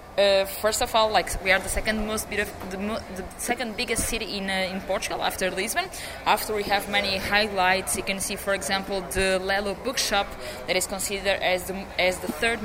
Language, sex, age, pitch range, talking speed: English, female, 20-39, 190-210 Hz, 210 wpm